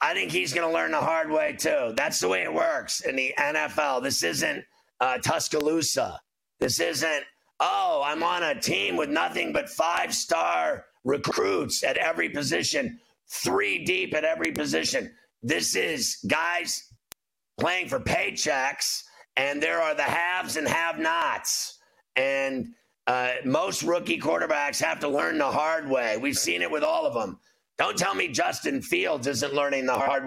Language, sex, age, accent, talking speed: English, male, 50-69, American, 165 wpm